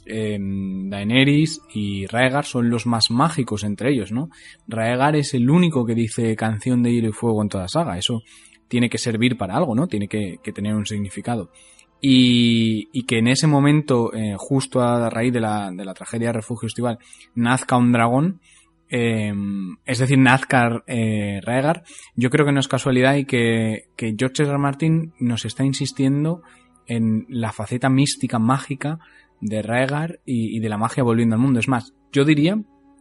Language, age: Spanish, 20-39